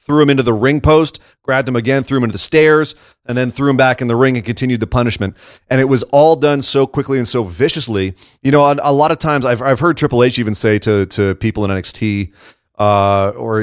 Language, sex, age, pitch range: English, male, 30-49, 110-145 Hz